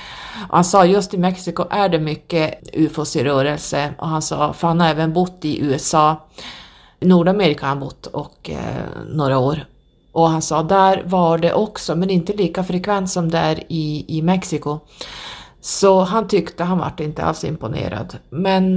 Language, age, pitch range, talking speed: Swedish, 30-49, 155-195 Hz, 170 wpm